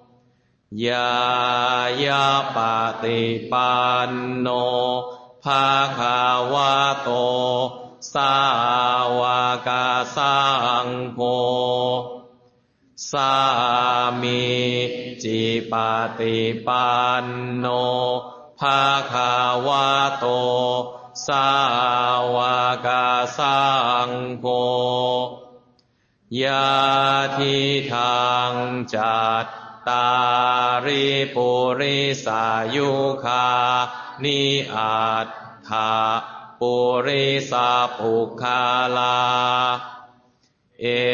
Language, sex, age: Chinese, male, 20-39